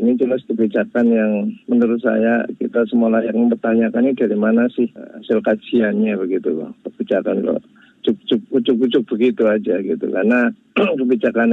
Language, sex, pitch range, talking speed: Indonesian, male, 110-140 Hz, 125 wpm